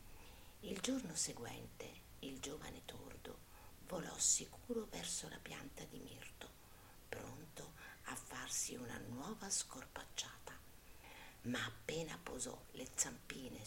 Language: Italian